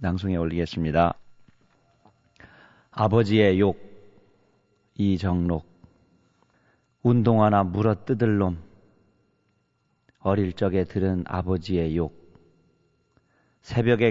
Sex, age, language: male, 40-59, Korean